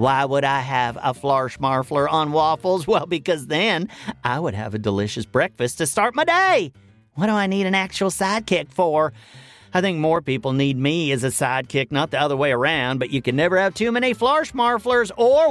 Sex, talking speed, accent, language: male, 210 wpm, American, English